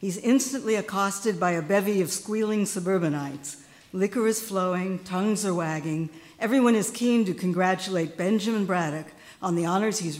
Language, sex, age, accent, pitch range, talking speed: English, female, 60-79, American, 160-200 Hz, 155 wpm